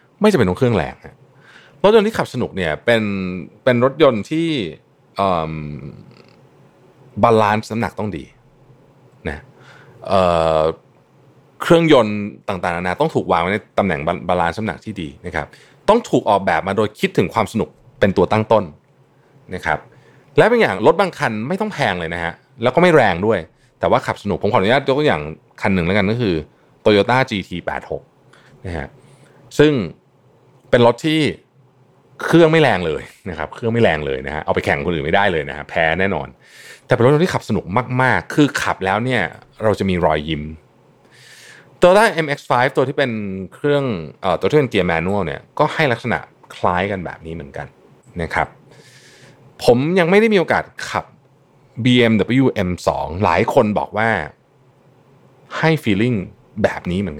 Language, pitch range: Thai, 95-140 Hz